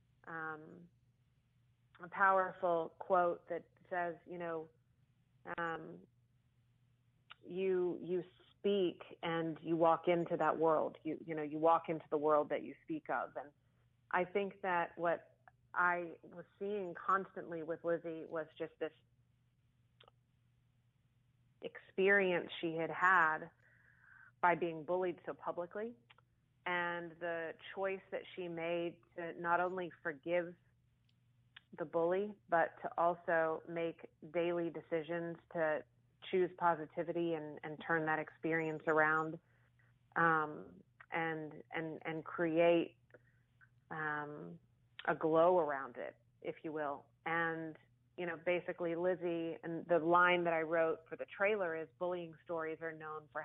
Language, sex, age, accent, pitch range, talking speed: English, female, 30-49, American, 130-170 Hz, 125 wpm